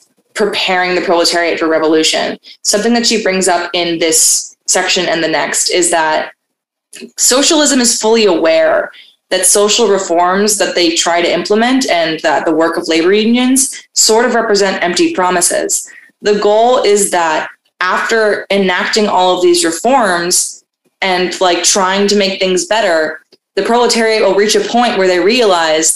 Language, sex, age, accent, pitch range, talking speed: English, female, 20-39, American, 170-215 Hz, 155 wpm